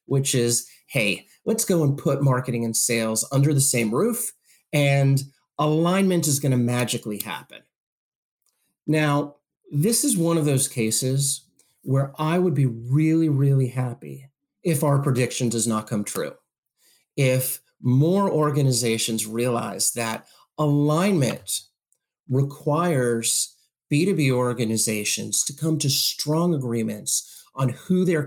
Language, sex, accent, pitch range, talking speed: English, male, American, 120-160 Hz, 125 wpm